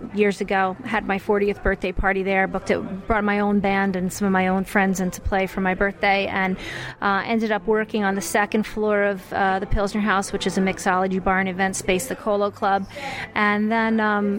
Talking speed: 220 wpm